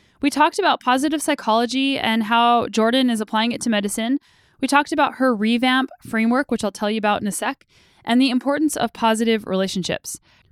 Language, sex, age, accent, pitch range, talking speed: English, female, 10-29, American, 200-255 Hz, 190 wpm